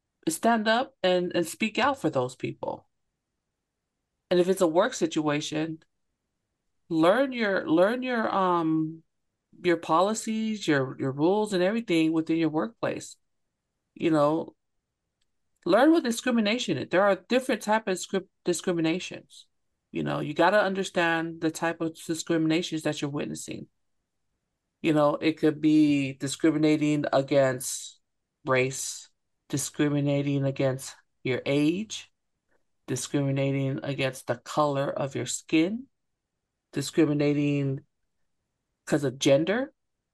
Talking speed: 115 wpm